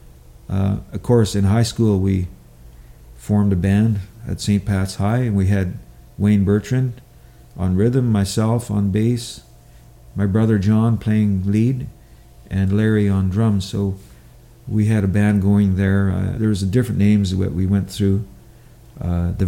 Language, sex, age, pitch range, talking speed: English, male, 50-69, 95-110 Hz, 155 wpm